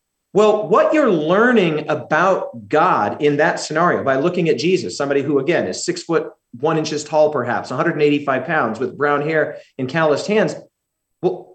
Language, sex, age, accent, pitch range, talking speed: English, male, 40-59, American, 145-190 Hz, 165 wpm